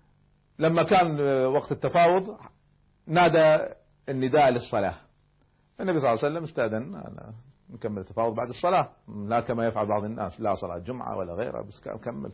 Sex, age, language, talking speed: male, 40-59, Arabic, 140 wpm